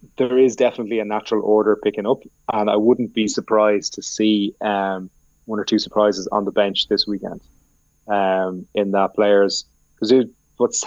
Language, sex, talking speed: English, male, 170 wpm